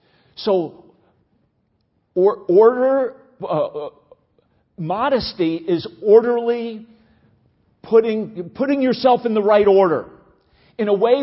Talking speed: 95 wpm